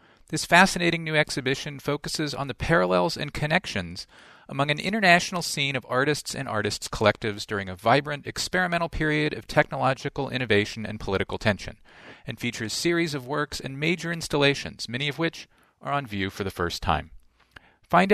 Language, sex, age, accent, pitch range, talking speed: English, male, 40-59, American, 120-175 Hz, 160 wpm